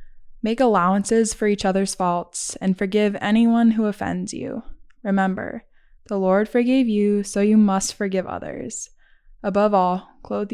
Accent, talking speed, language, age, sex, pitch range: American, 140 wpm, English, 10-29, female, 190-220 Hz